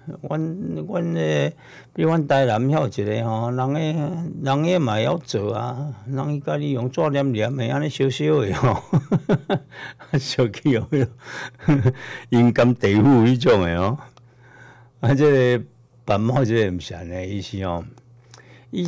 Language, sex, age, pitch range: Chinese, male, 60-79, 105-130 Hz